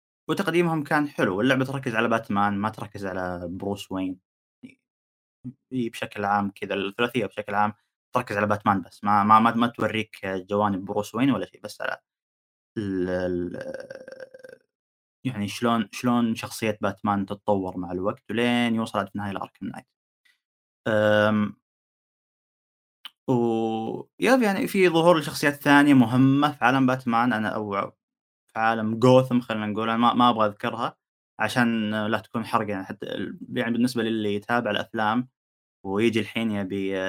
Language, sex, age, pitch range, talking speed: Arabic, male, 20-39, 100-125 Hz, 140 wpm